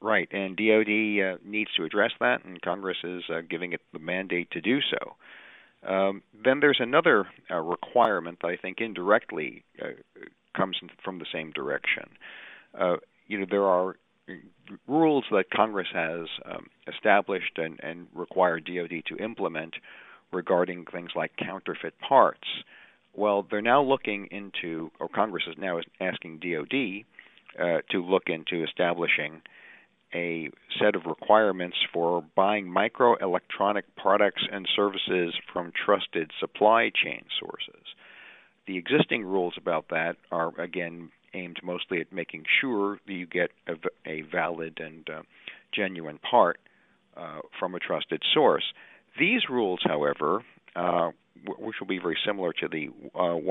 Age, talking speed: 50-69, 145 wpm